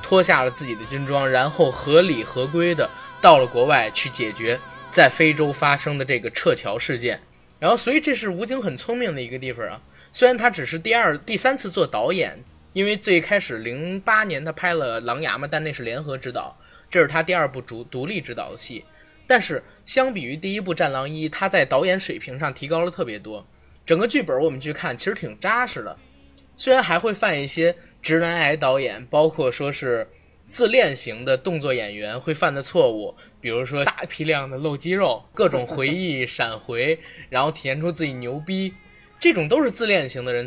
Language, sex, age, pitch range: Chinese, male, 20-39, 130-185 Hz